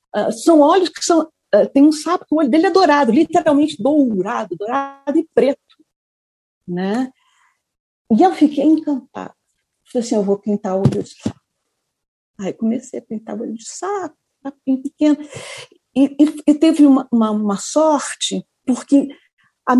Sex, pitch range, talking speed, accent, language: female, 215-295 Hz, 155 wpm, Brazilian, Portuguese